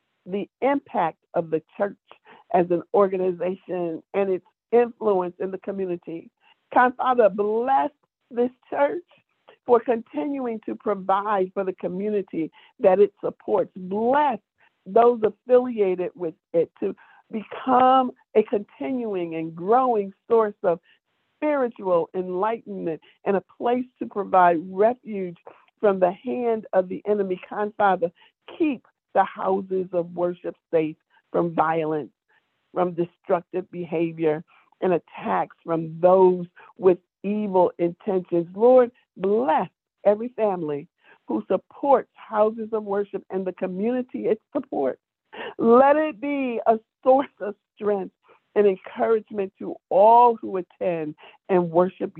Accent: American